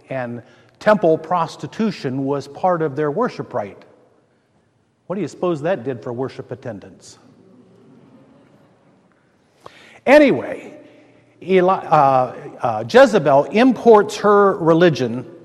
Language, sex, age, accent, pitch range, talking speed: English, male, 50-69, American, 140-185 Hz, 95 wpm